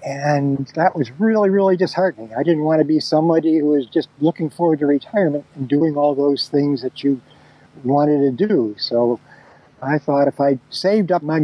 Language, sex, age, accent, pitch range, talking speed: English, male, 60-79, American, 140-170 Hz, 195 wpm